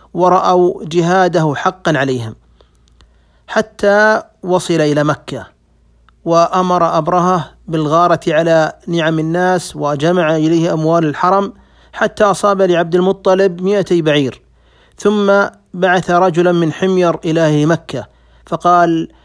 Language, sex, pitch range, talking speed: Arabic, male, 155-190 Hz, 100 wpm